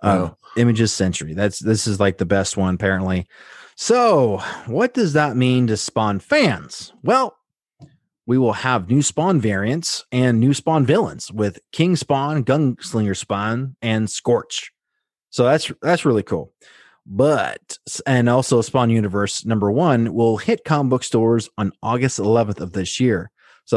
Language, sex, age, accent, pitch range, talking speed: English, male, 30-49, American, 100-130 Hz, 155 wpm